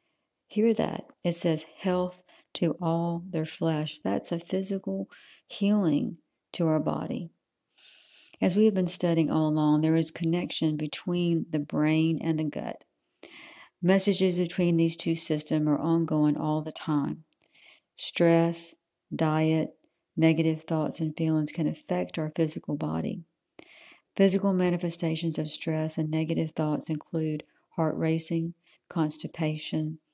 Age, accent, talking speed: 50-69, American, 125 wpm